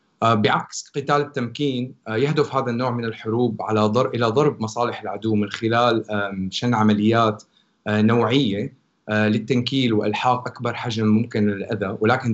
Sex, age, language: male, 30-49, Arabic